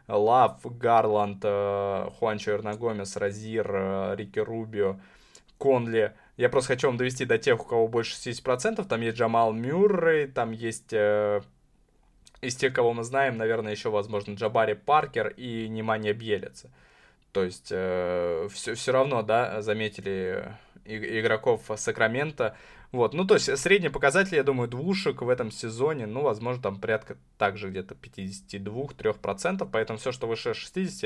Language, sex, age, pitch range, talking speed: Russian, male, 20-39, 105-135 Hz, 135 wpm